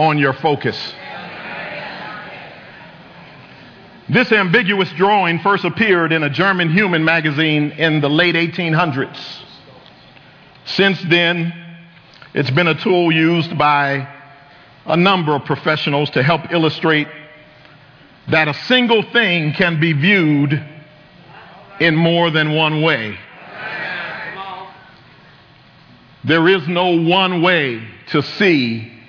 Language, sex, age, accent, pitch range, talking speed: English, male, 50-69, American, 150-195 Hz, 105 wpm